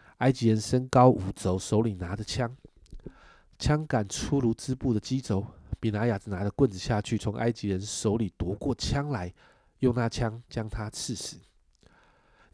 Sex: male